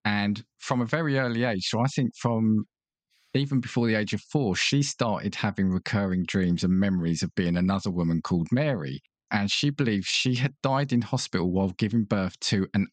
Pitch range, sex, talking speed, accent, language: 95-125 Hz, male, 195 wpm, British, English